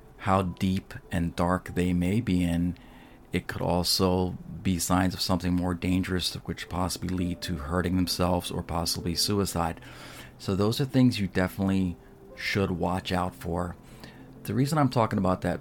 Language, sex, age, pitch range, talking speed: English, male, 40-59, 90-95 Hz, 160 wpm